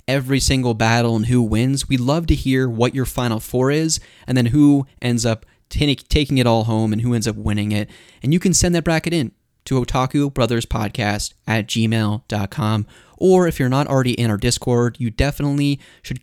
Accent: American